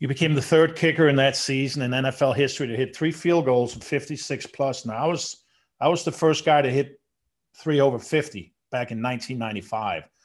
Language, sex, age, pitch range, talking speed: English, male, 50-69, 115-145 Hz, 205 wpm